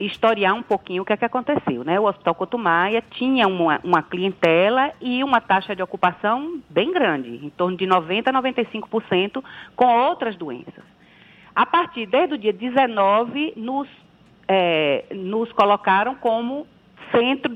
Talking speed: 150 wpm